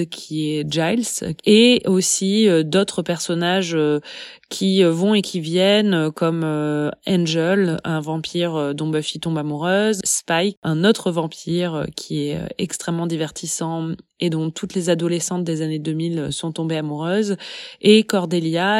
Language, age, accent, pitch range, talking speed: French, 20-39, French, 165-200 Hz, 130 wpm